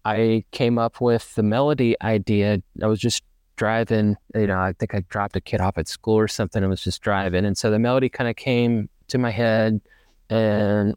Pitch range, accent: 100-120 Hz, American